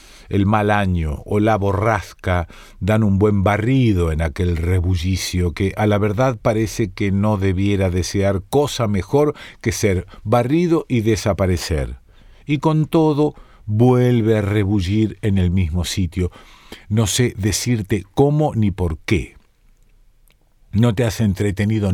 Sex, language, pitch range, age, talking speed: male, Spanish, 95-115 Hz, 50-69, 135 wpm